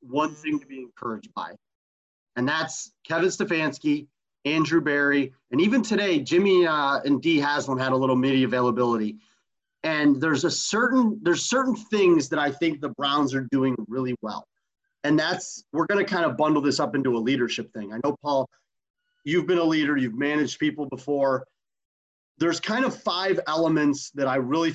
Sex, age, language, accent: male, 30-49, English, American